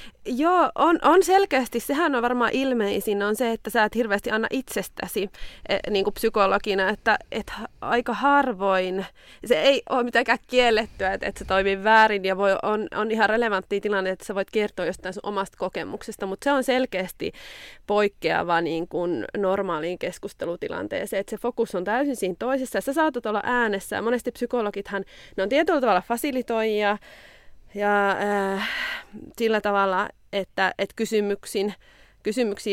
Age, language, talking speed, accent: 20-39, Finnish, 155 wpm, native